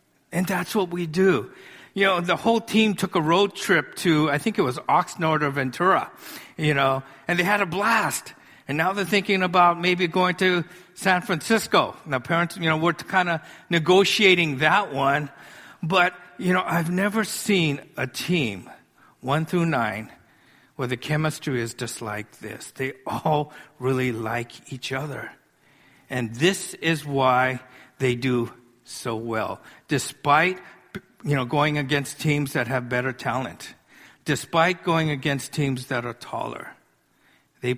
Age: 50-69